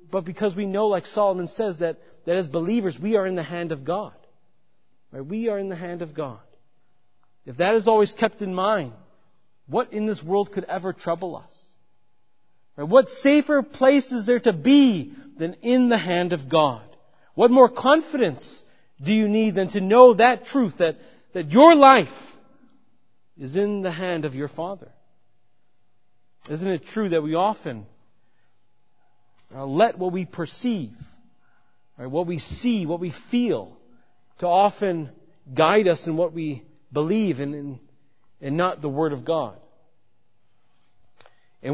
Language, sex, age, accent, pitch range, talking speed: English, male, 40-59, American, 145-205 Hz, 160 wpm